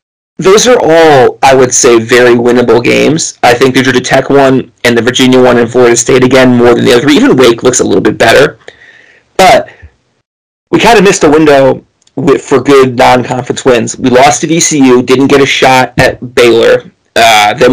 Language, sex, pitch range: English, male, 125-155 Hz